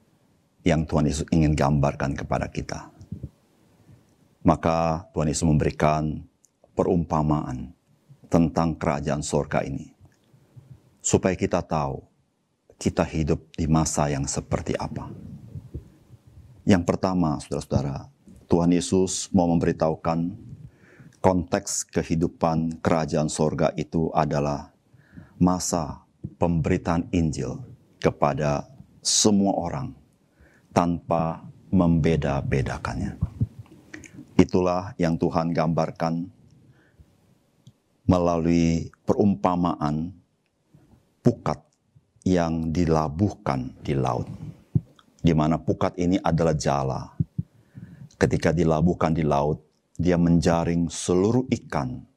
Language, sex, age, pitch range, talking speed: Indonesian, male, 50-69, 80-95 Hz, 80 wpm